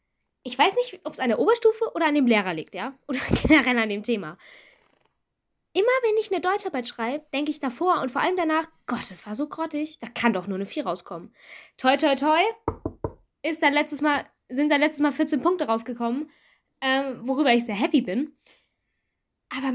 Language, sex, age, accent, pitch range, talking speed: German, female, 10-29, German, 235-310 Hz, 185 wpm